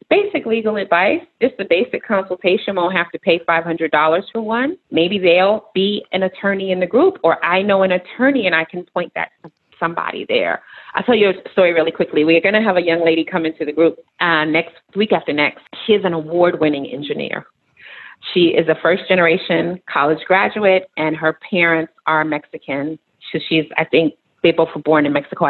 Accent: American